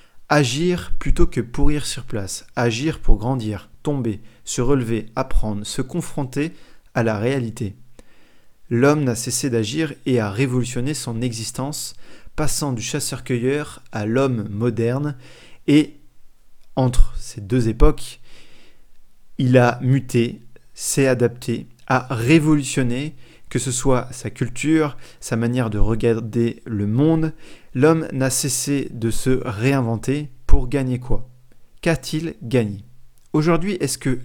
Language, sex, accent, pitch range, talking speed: French, male, French, 115-140 Hz, 125 wpm